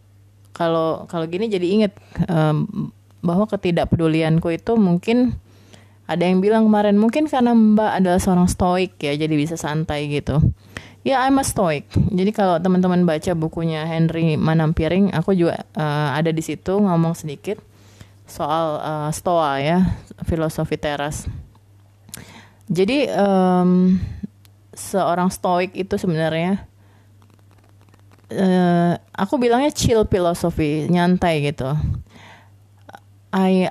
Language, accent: English, Indonesian